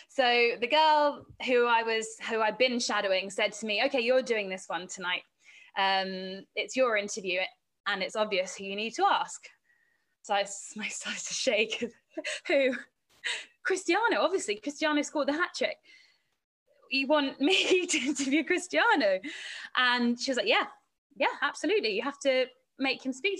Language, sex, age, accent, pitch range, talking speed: English, female, 20-39, British, 220-295 Hz, 165 wpm